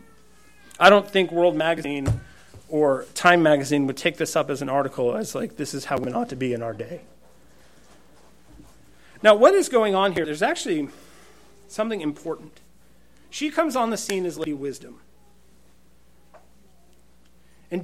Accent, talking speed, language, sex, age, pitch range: American, 155 wpm, English, male, 40-59, 145-210 Hz